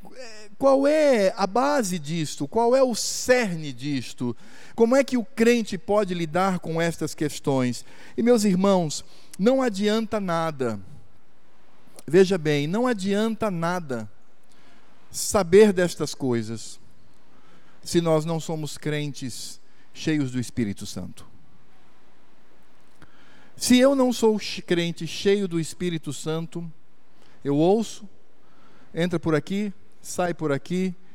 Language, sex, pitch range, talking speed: Portuguese, male, 125-195 Hz, 115 wpm